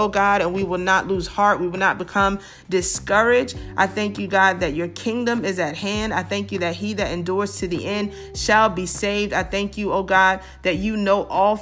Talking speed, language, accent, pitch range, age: 235 wpm, English, American, 175-210 Hz, 30-49